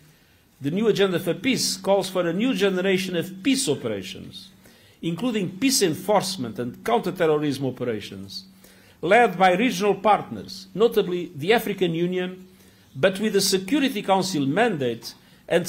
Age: 50-69